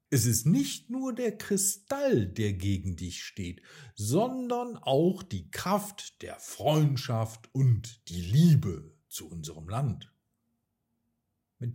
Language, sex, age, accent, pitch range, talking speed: German, male, 50-69, German, 100-160 Hz, 115 wpm